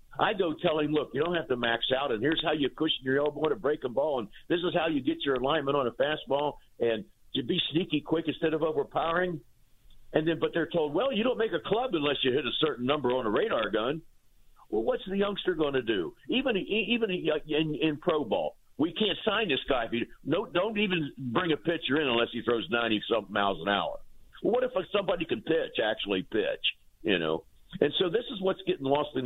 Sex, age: male, 50-69